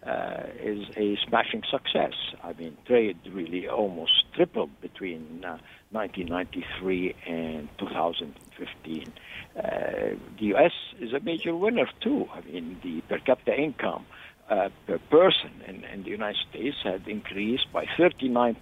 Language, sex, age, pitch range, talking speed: English, male, 60-79, 100-160 Hz, 135 wpm